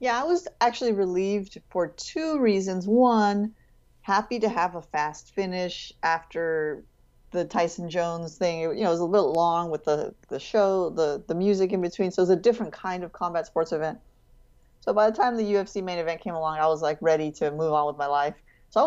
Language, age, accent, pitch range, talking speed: English, 30-49, American, 160-195 Hz, 215 wpm